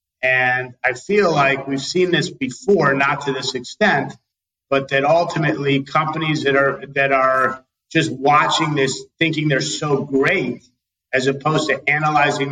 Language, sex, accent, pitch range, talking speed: English, male, American, 135-170 Hz, 150 wpm